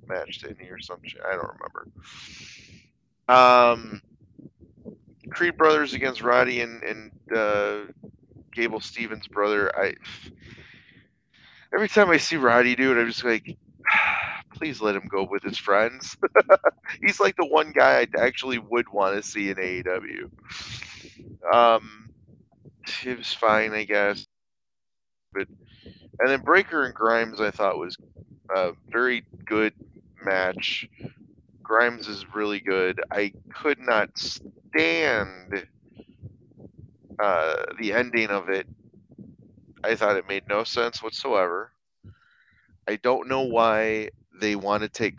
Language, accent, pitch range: English, American, 100-125 Hz